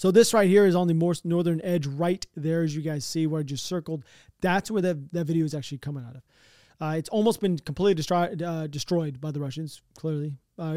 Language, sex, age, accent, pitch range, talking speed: English, male, 30-49, American, 150-180 Hz, 240 wpm